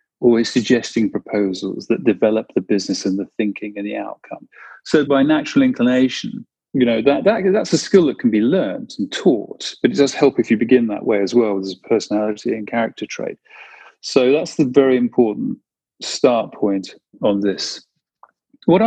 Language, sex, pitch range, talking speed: English, male, 105-155 Hz, 180 wpm